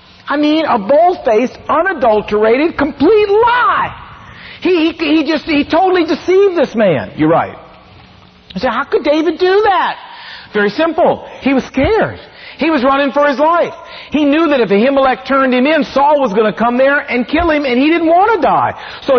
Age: 50-69